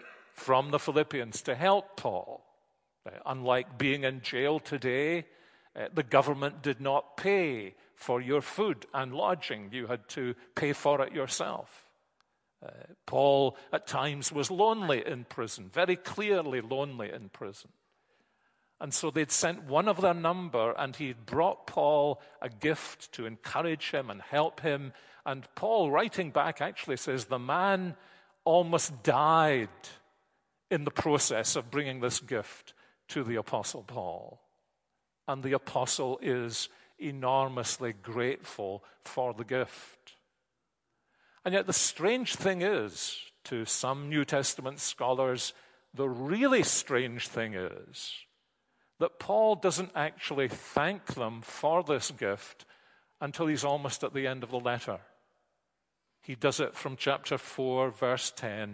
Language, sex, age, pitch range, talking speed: English, male, 50-69, 125-160 Hz, 140 wpm